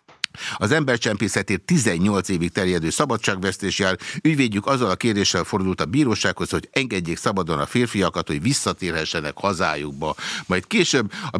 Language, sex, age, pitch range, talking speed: Hungarian, male, 60-79, 90-115 Hz, 130 wpm